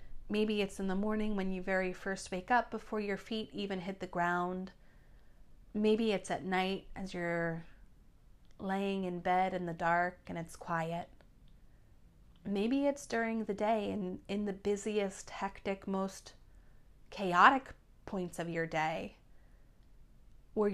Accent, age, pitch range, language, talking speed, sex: American, 30-49, 170-200 Hz, English, 145 wpm, female